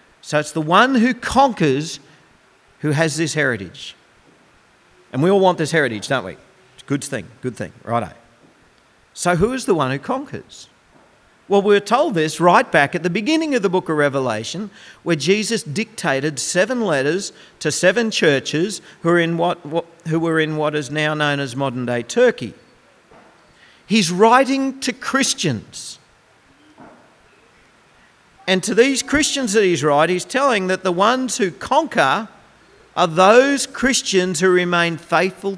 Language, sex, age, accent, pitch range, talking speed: English, male, 50-69, Australian, 150-215 Hz, 155 wpm